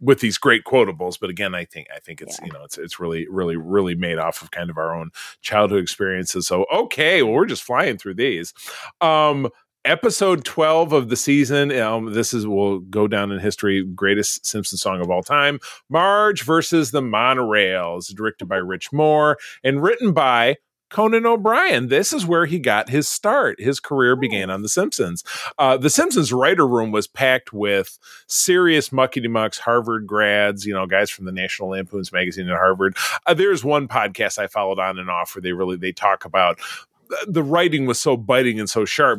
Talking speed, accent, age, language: 195 wpm, American, 30-49, English